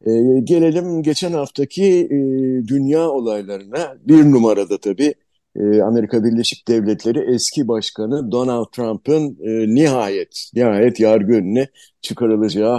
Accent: native